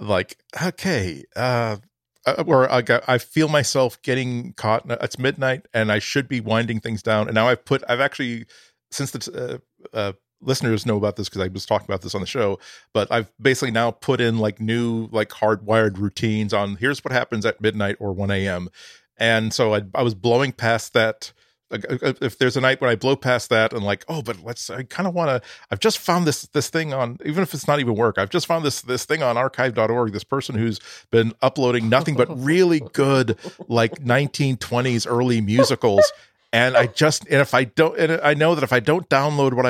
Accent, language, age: American, English, 40-59